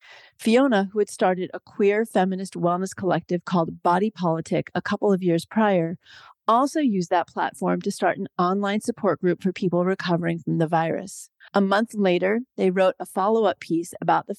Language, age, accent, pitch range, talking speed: English, 40-59, American, 170-200 Hz, 180 wpm